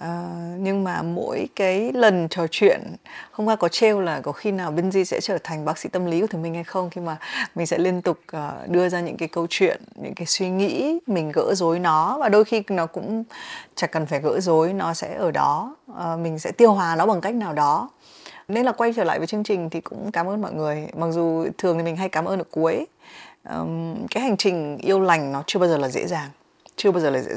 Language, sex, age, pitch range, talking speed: Vietnamese, female, 20-39, 160-205 Hz, 255 wpm